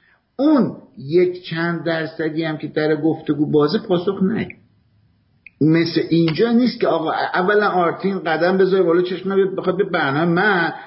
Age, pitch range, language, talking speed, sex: 50-69, 145-195 Hz, English, 145 wpm, male